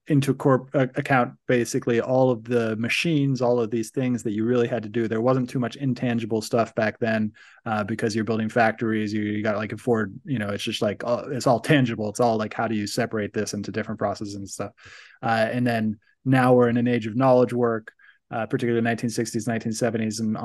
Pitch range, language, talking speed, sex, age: 110-125 Hz, English, 220 wpm, male, 20-39